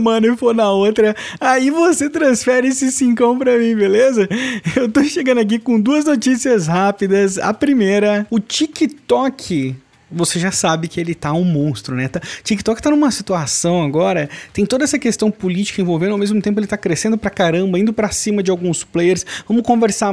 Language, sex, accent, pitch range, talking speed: Portuguese, male, Brazilian, 170-245 Hz, 180 wpm